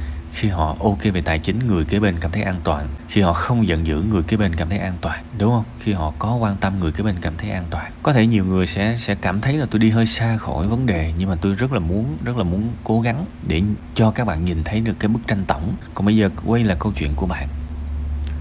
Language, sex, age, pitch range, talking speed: Vietnamese, male, 20-39, 80-115 Hz, 280 wpm